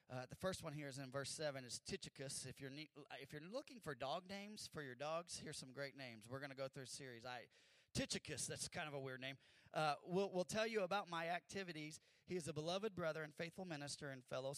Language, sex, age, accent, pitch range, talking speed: English, male, 30-49, American, 125-160 Hz, 245 wpm